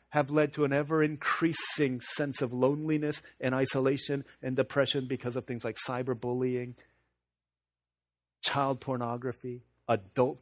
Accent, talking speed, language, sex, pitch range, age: American, 115 wpm, English, male, 90-140 Hz, 40-59